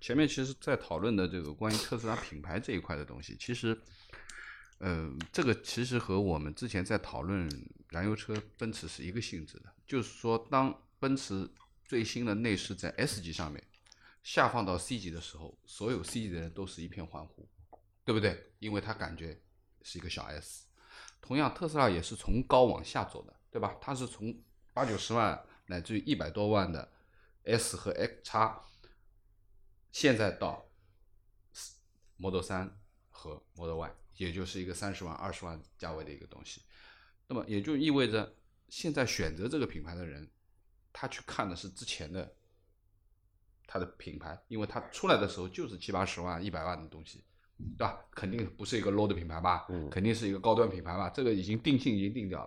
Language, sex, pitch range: Chinese, male, 90-110 Hz